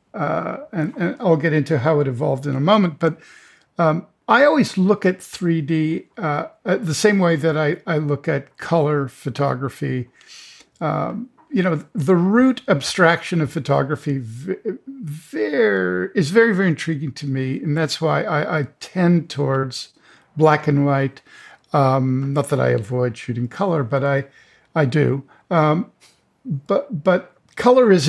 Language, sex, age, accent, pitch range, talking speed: English, male, 50-69, American, 140-185 Hz, 155 wpm